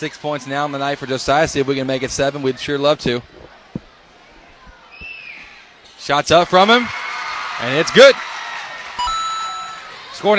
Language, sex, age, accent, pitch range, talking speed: English, male, 20-39, American, 145-210 Hz, 155 wpm